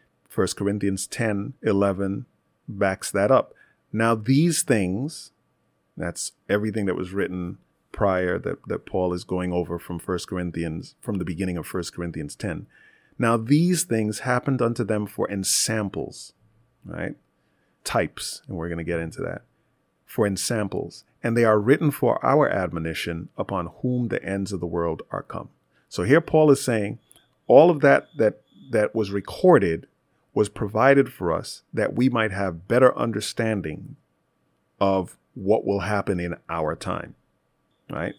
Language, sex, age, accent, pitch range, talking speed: English, male, 40-59, American, 95-125 Hz, 155 wpm